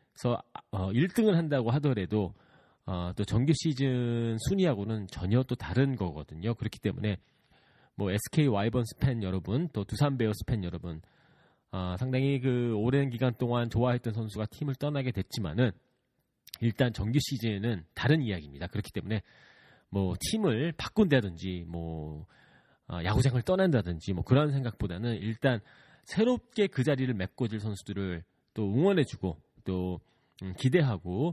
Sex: male